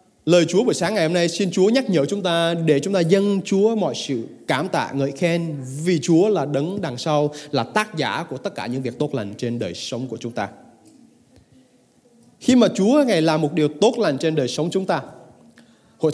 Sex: male